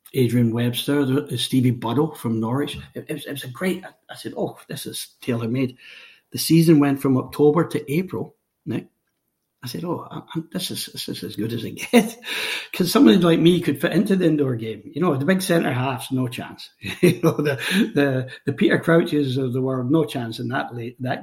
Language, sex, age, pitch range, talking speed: English, male, 60-79, 125-160 Hz, 210 wpm